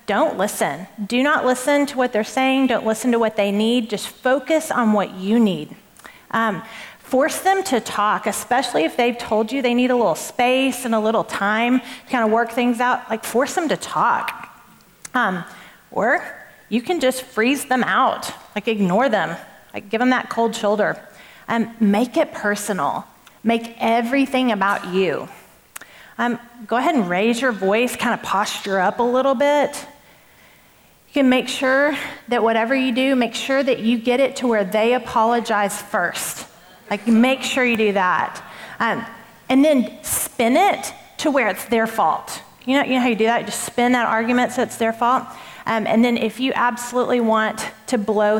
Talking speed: 185 wpm